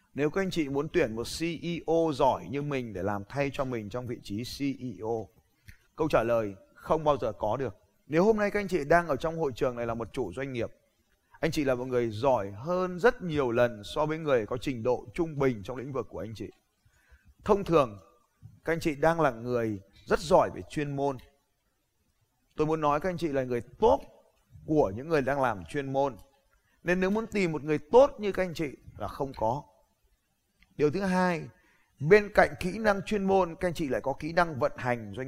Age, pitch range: 20-39, 120-170 Hz